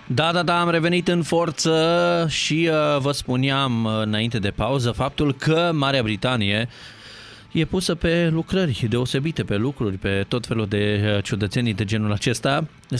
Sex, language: male, Romanian